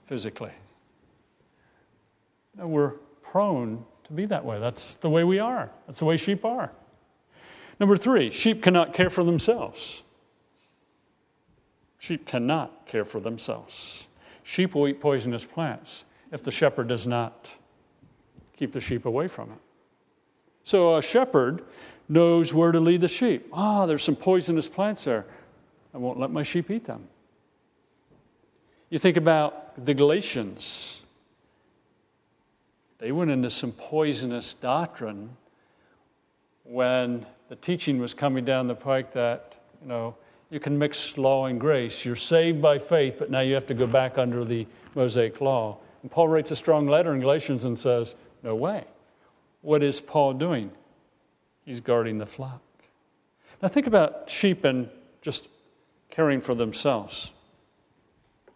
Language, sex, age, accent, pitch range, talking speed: English, male, 50-69, American, 125-170 Hz, 140 wpm